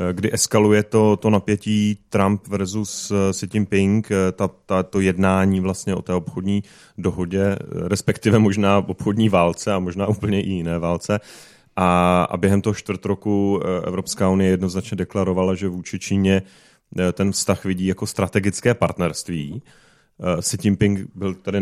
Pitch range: 95-105 Hz